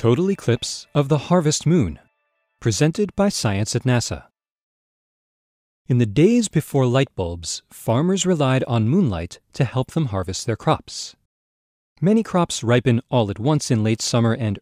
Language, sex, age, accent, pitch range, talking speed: English, male, 40-59, American, 110-165 Hz, 150 wpm